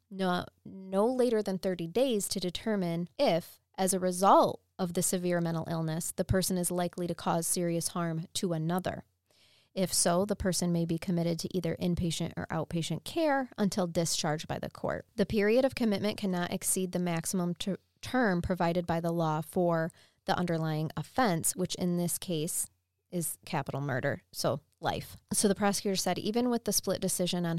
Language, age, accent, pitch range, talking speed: English, 20-39, American, 165-190 Hz, 180 wpm